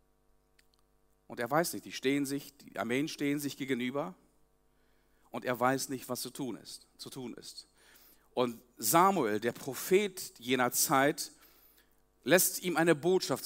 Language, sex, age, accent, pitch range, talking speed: German, male, 50-69, German, 120-155 Hz, 145 wpm